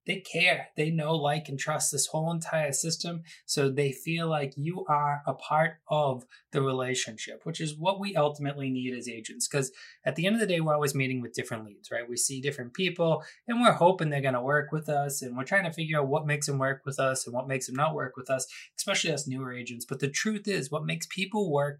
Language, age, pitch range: English, 20-39, 130-160 Hz